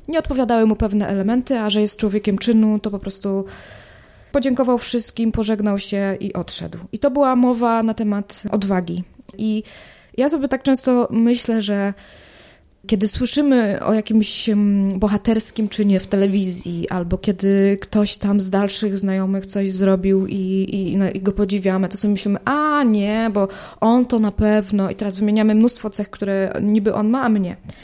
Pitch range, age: 195-230 Hz, 20-39